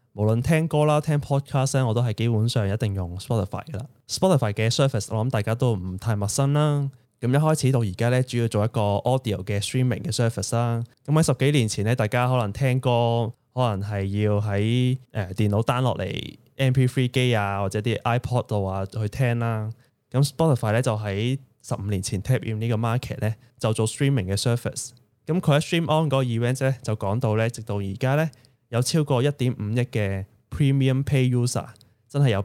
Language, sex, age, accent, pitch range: Chinese, male, 20-39, native, 110-135 Hz